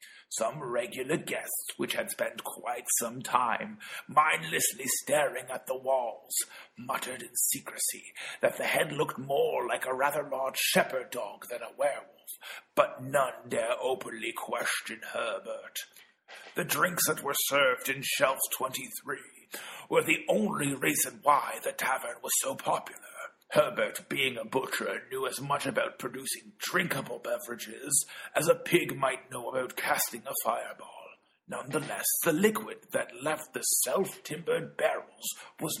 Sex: male